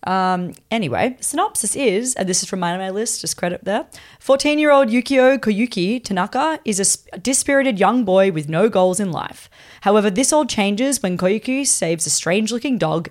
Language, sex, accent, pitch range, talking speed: English, female, Australian, 165-230 Hz, 180 wpm